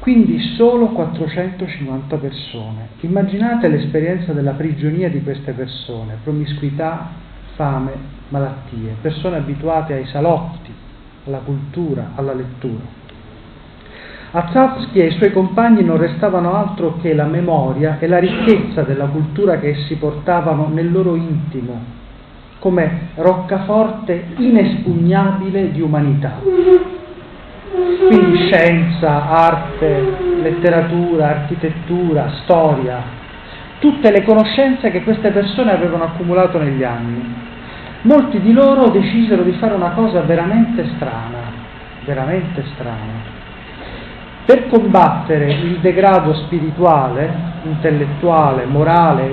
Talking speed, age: 105 wpm, 40-59